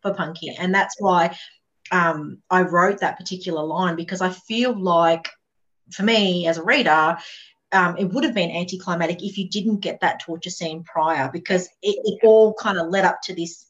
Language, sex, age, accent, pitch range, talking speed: English, female, 30-49, Australian, 165-195 Hz, 195 wpm